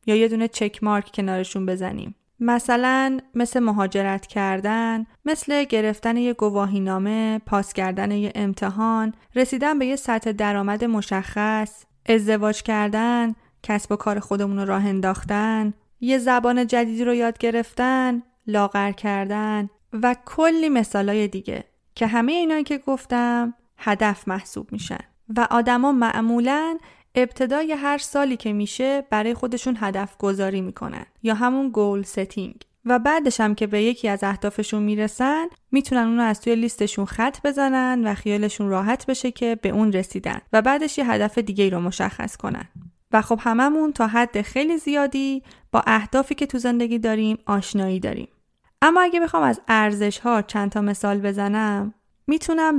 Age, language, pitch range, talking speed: 30-49, Persian, 205-250 Hz, 150 wpm